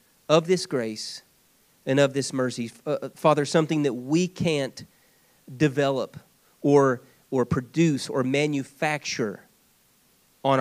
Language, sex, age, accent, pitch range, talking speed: English, male, 40-59, American, 130-165 Hz, 105 wpm